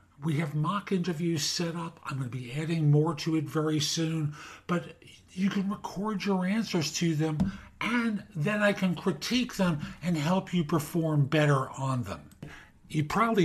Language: English